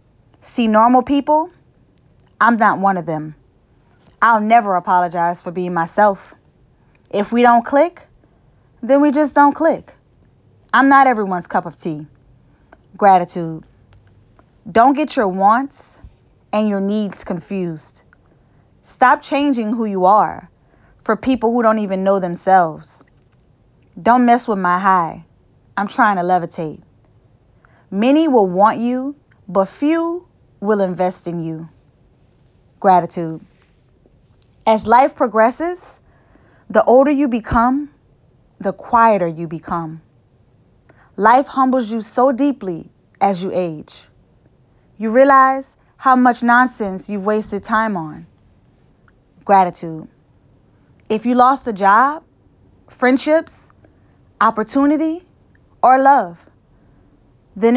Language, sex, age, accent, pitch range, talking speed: English, female, 20-39, American, 165-245 Hz, 115 wpm